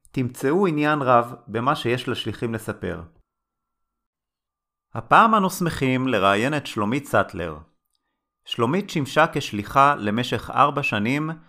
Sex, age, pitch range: male, 30-49, 110-150 Hz